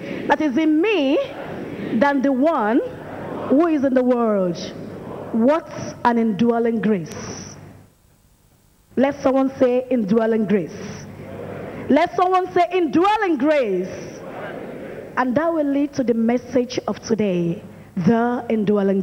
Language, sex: English, female